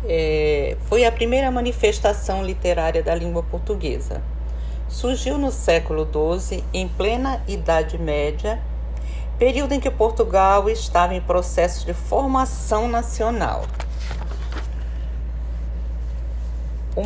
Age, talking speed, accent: 50-69, 95 wpm, Brazilian